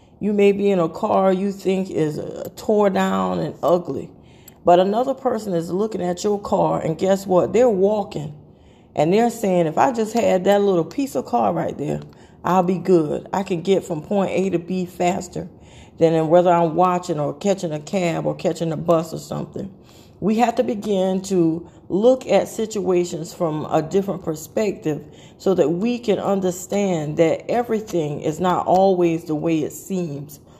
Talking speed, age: 180 wpm, 40-59